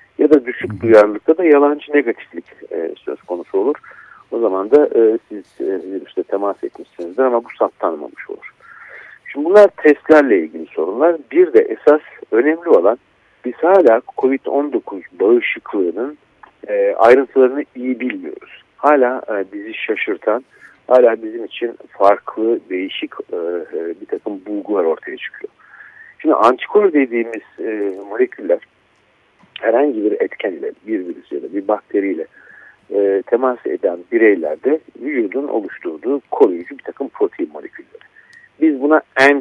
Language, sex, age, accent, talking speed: Turkish, male, 50-69, native, 120 wpm